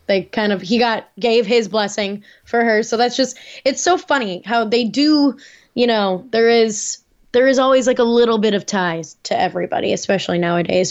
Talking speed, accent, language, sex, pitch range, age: 200 wpm, American, English, female, 195-235 Hz, 10-29